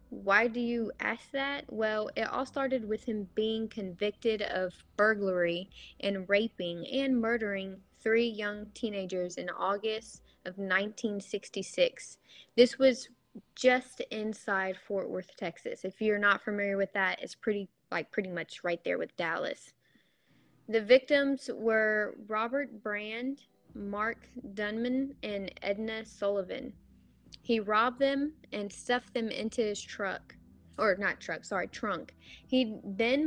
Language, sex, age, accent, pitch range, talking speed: English, female, 10-29, American, 195-235 Hz, 135 wpm